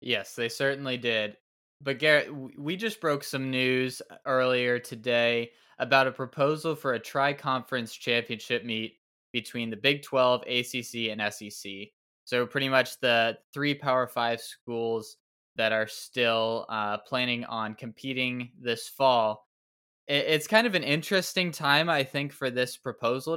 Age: 20-39